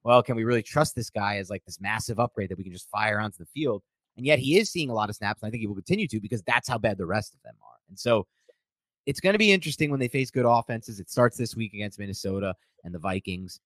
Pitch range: 90-130 Hz